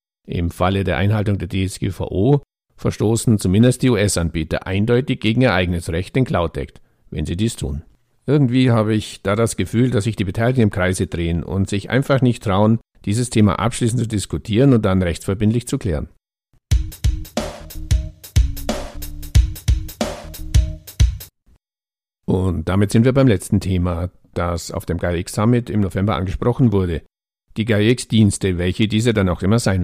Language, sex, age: German, male, 50-69